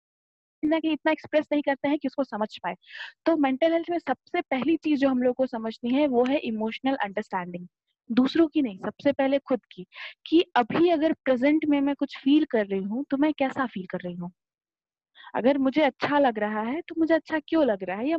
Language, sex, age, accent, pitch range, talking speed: Hindi, female, 20-39, native, 215-310 Hz, 80 wpm